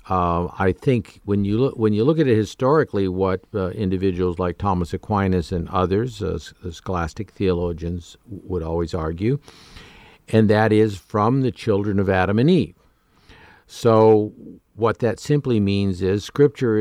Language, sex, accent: English, male, American